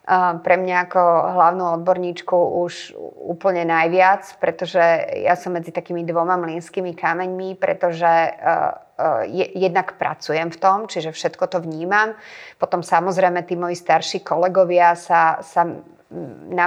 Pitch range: 170-185 Hz